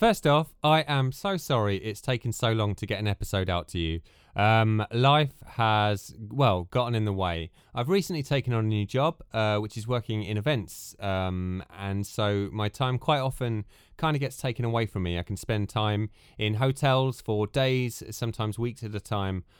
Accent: British